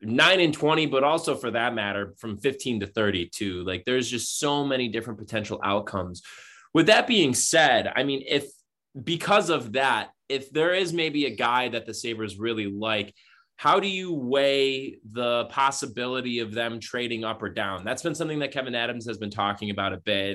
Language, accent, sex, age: English, American, male, 20-39